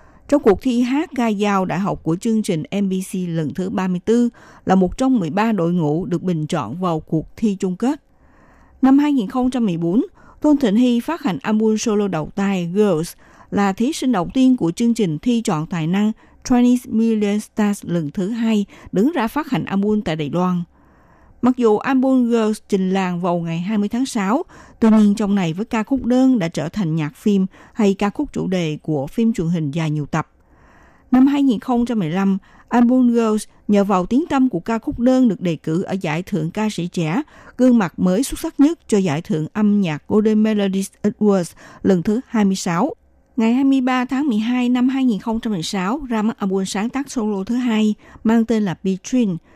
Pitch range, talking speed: 180-245 Hz, 195 wpm